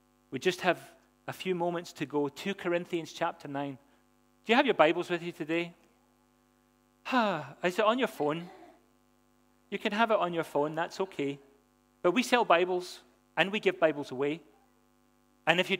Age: 40-59